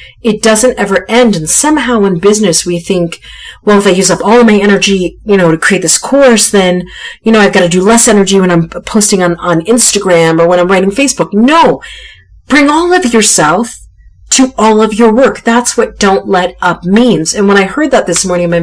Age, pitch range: 40-59, 175-230 Hz